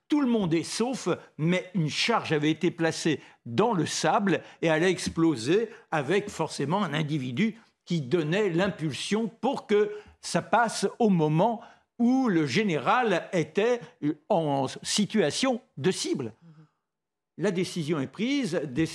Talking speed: 135 wpm